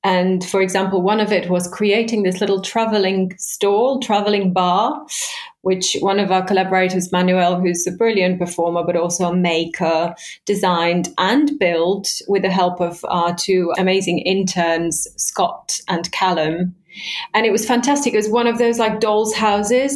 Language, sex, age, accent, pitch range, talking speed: English, female, 30-49, British, 185-235 Hz, 160 wpm